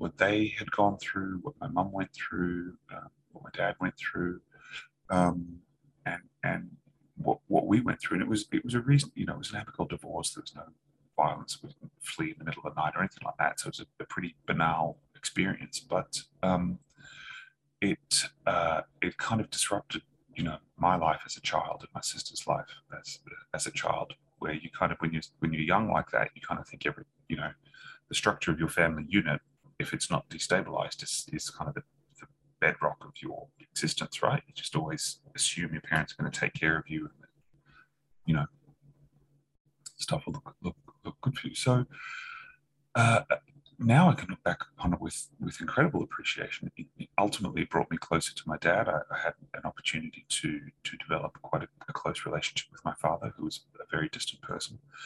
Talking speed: 210 wpm